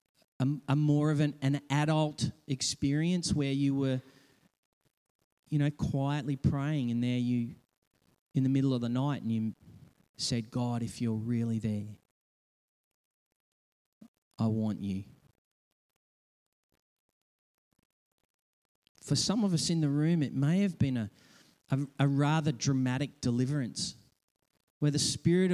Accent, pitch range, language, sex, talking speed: Australian, 120-150 Hz, English, male, 125 wpm